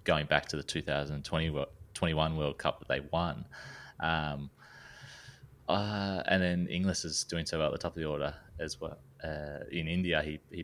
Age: 20-39